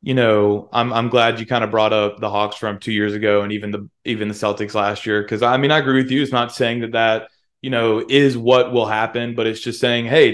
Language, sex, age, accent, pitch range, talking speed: English, male, 20-39, American, 110-125 Hz, 275 wpm